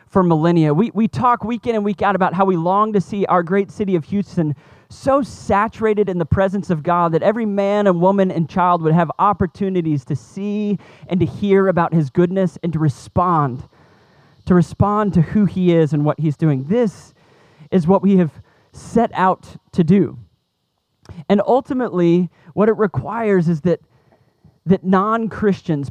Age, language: 30-49, English